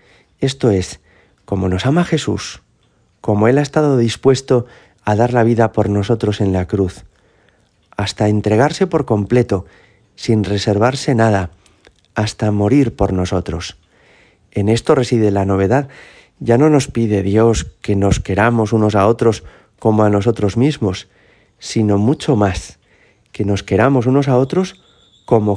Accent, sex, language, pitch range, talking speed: Spanish, male, Spanish, 95-125 Hz, 145 wpm